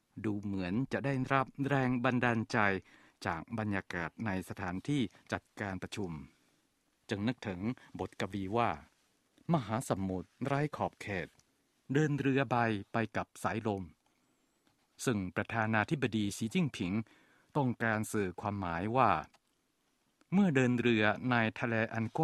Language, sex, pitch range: Thai, male, 105-130 Hz